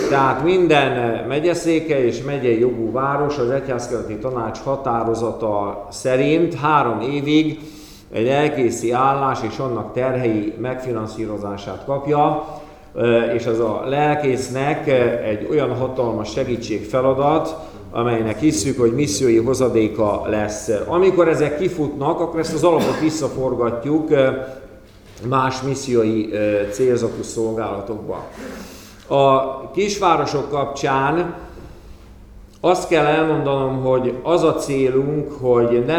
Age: 50-69